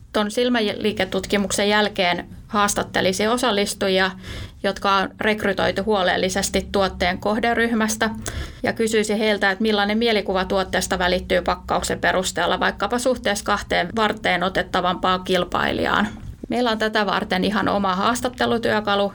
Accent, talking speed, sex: native, 105 wpm, female